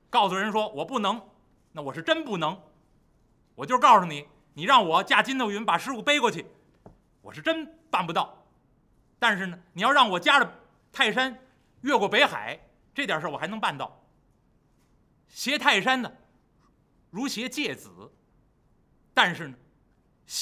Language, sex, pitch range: Chinese, male, 190-280 Hz